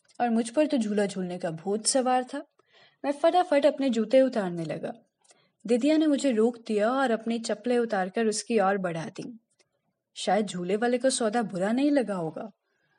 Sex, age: female, 10-29